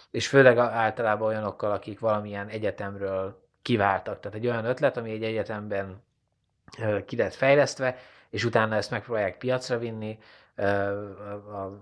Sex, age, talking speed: male, 20-39, 120 wpm